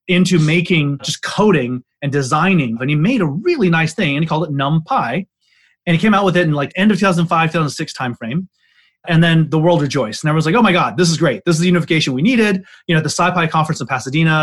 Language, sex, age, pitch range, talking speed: English, male, 30-49, 140-190 Hz, 250 wpm